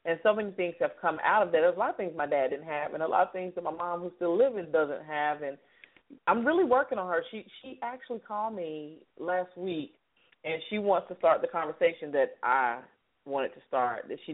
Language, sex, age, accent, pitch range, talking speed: English, female, 40-59, American, 155-210 Hz, 245 wpm